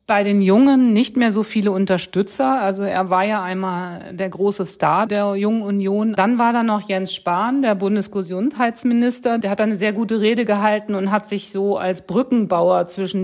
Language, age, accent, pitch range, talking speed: German, 50-69, German, 185-215 Hz, 185 wpm